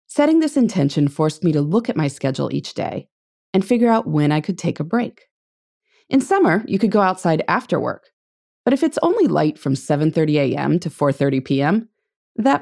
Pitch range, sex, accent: 150-245 Hz, female, American